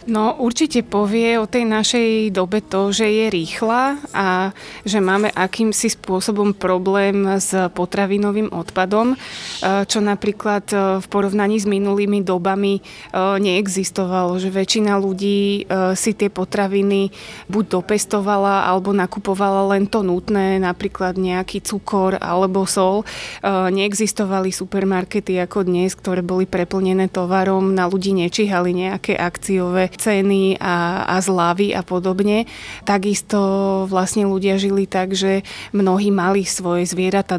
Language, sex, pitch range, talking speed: Slovak, female, 185-205 Hz, 120 wpm